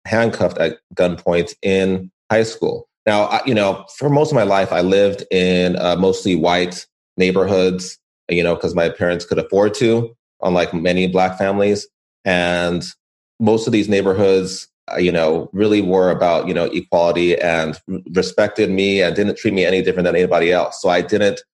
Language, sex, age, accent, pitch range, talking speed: English, male, 30-49, American, 90-105 Hz, 170 wpm